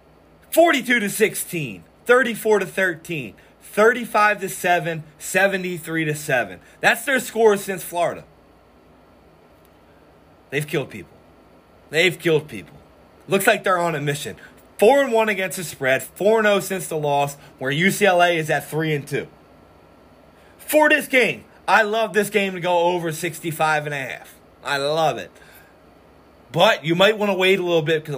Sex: male